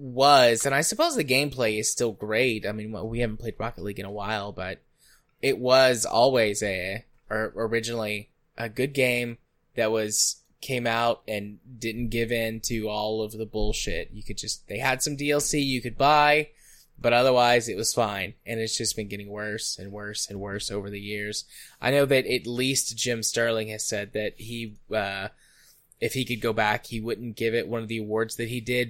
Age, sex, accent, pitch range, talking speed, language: 10-29, male, American, 105-125 Hz, 205 wpm, English